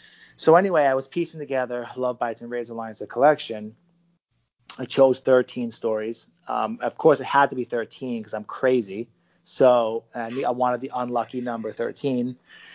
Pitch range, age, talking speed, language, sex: 120-150 Hz, 30-49, 165 wpm, English, male